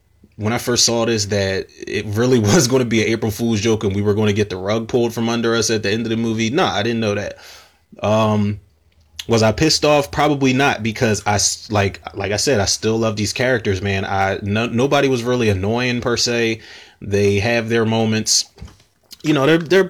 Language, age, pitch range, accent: English, 20-39, 100-120 Hz, American